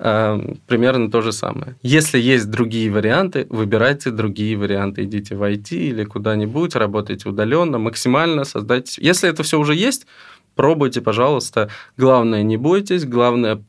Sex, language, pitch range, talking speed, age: male, Russian, 110-140 Hz, 135 wpm, 20-39